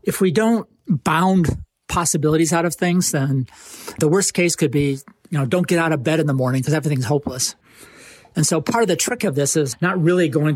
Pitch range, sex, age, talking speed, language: 140-170 Hz, male, 40-59, 220 wpm, English